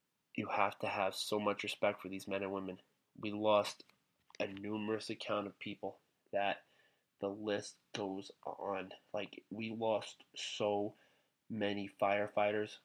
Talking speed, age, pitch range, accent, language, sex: 140 wpm, 20-39, 100-110 Hz, American, English, male